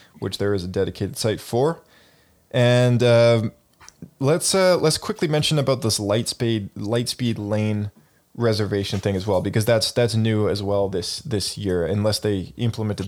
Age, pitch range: 20-39, 100-115 Hz